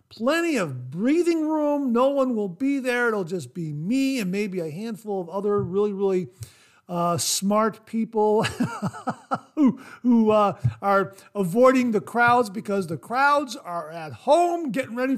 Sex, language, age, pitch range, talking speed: male, English, 50-69, 160-220 Hz, 155 wpm